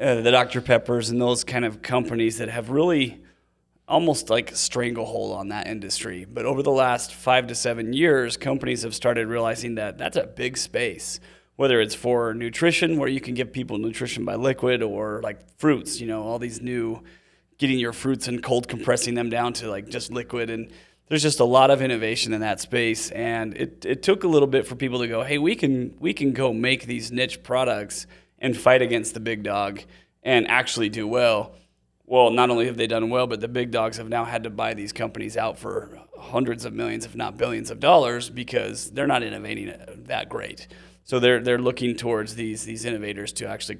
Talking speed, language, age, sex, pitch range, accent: 210 wpm, English, 30-49, male, 115-130 Hz, American